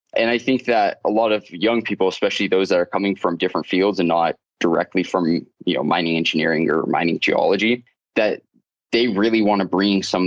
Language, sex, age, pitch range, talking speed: English, male, 20-39, 90-110 Hz, 205 wpm